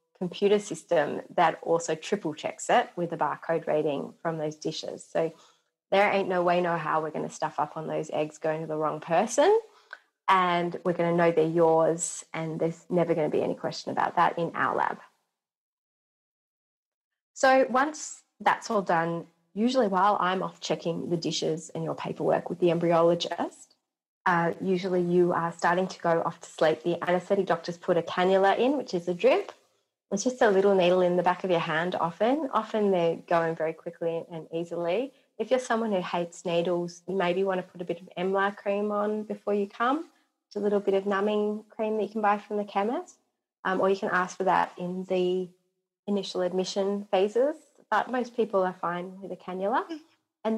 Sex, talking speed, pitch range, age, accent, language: female, 200 wpm, 170-210 Hz, 30-49, Australian, English